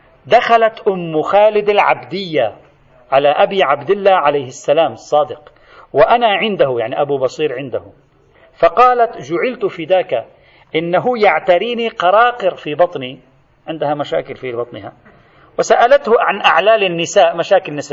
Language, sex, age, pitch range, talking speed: Arabic, male, 40-59, 145-240 Hz, 115 wpm